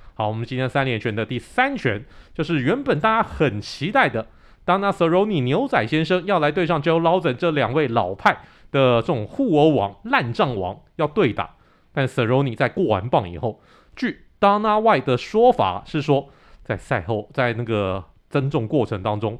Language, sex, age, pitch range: Chinese, male, 30-49, 110-150 Hz